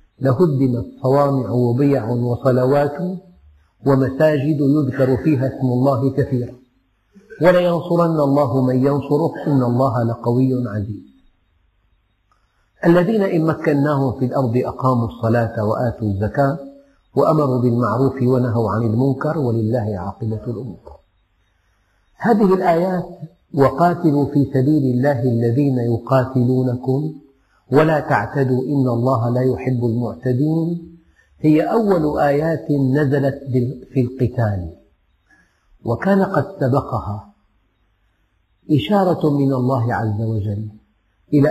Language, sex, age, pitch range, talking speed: Arabic, male, 50-69, 115-150 Hz, 95 wpm